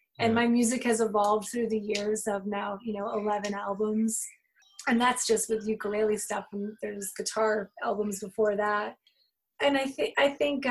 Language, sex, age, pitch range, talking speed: English, female, 20-39, 220-280 Hz, 170 wpm